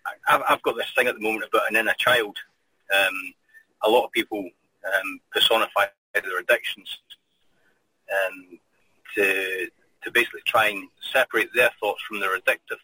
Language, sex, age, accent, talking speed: English, male, 30-49, British, 150 wpm